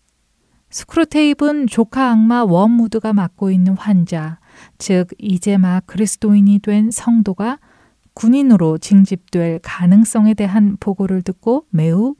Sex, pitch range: female, 170-225 Hz